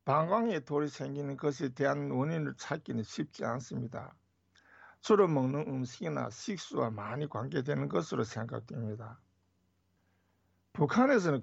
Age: 60-79